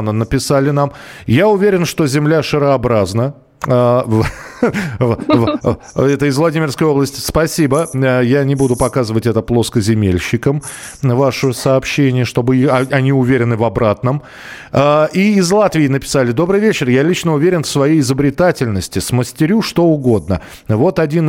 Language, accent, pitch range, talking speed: Russian, native, 115-150 Hz, 120 wpm